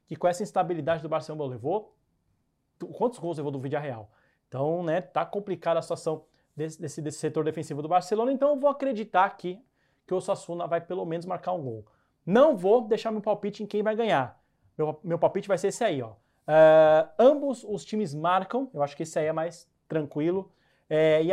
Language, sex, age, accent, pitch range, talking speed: Portuguese, male, 20-39, Brazilian, 155-205 Hz, 205 wpm